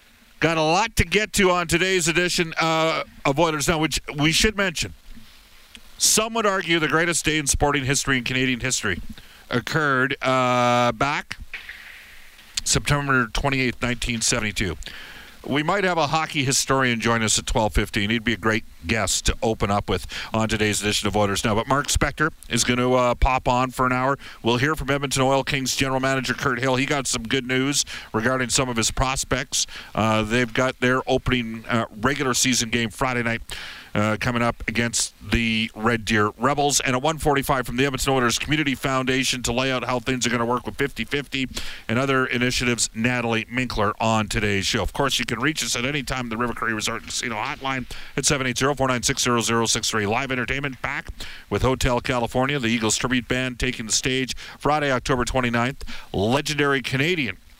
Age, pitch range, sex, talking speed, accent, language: 50-69, 115-140 Hz, male, 180 wpm, American, English